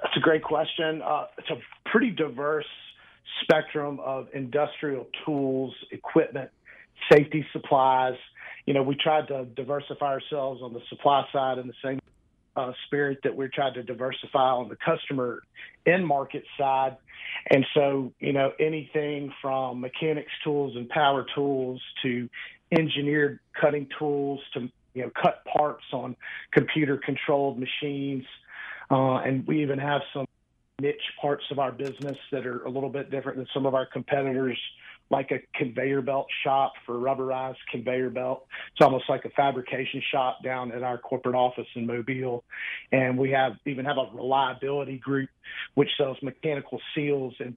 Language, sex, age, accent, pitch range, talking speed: English, male, 40-59, American, 130-145 Hz, 155 wpm